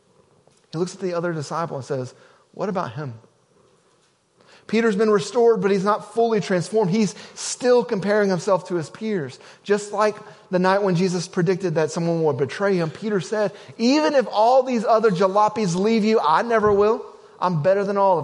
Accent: American